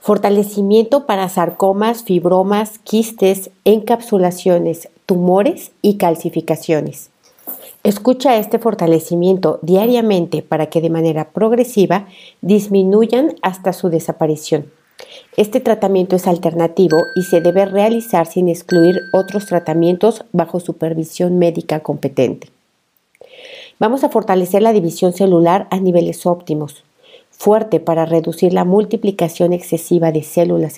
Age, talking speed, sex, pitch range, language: 50-69, 105 wpm, female, 165-205 Hz, Spanish